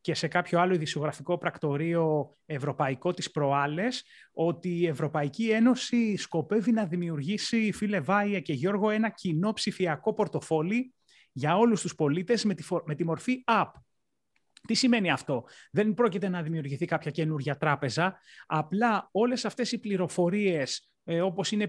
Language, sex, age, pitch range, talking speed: Greek, male, 30-49, 160-210 Hz, 145 wpm